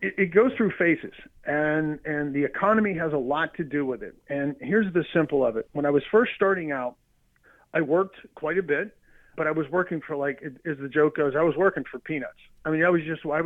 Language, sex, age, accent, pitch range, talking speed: English, male, 40-59, American, 140-165 Hz, 235 wpm